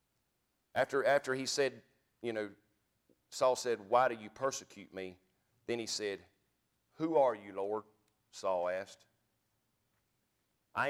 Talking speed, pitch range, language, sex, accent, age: 125 wpm, 105-130 Hz, English, male, American, 40-59